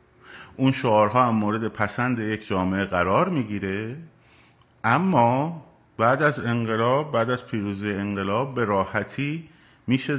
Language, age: Persian, 50-69